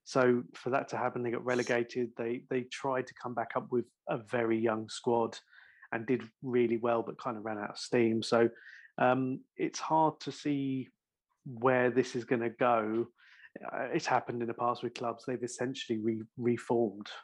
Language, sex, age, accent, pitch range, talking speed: English, male, 30-49, British, 115-125 Hz, 190 wpm